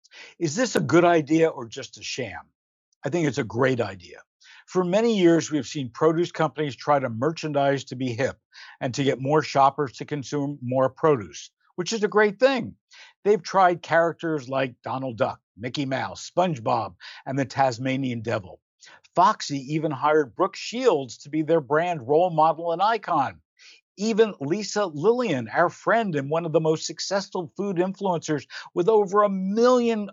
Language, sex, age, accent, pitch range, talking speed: English, male, 60-79, American, 135-175 Hz, 170 wpm